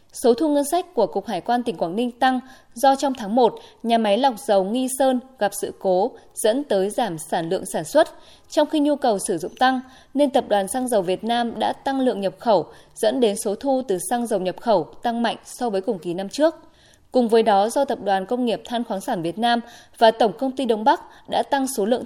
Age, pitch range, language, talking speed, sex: 10-29, 205-260 Hz, Vietnamese, 250 wpm, female